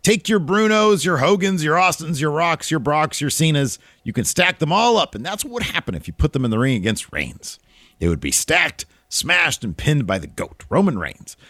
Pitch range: 110-160 Hz